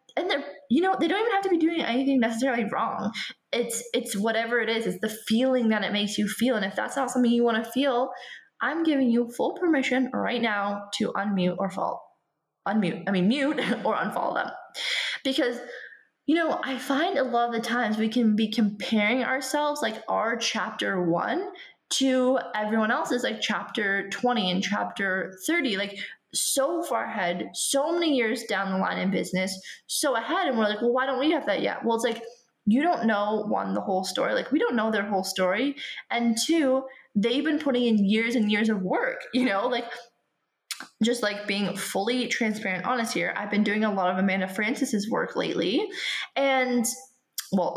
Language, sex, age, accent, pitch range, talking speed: English, female, 20-39, American, 205-265 Hz, 195 wpm